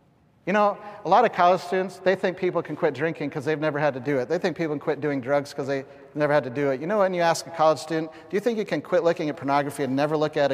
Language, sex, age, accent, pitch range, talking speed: English, male, 40-59, American, 150-175 Hz, 320 wpm